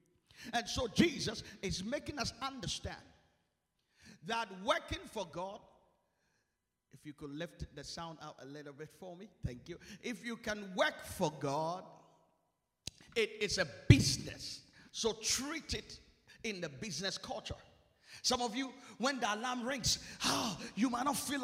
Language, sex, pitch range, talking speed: English, male, 195-280 Hz, 150 wpm